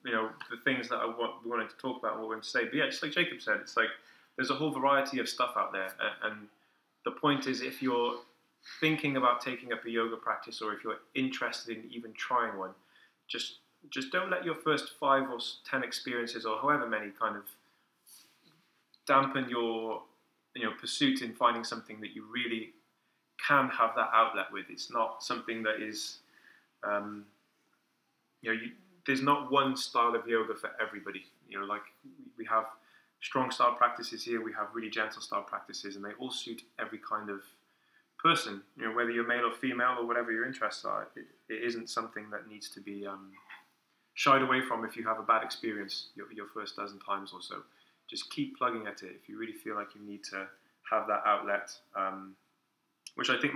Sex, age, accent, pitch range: male, 20-39, British, 105-135 Hz